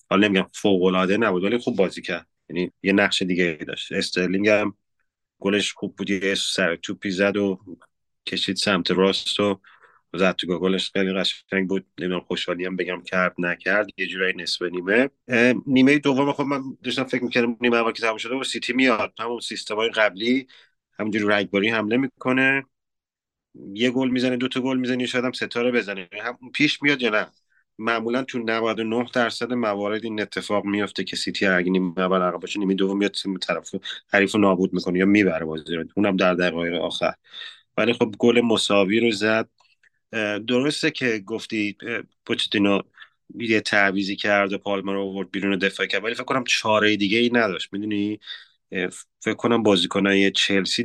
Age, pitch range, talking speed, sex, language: 30-49, 95-120 Hz, 170 wpm, male, Persian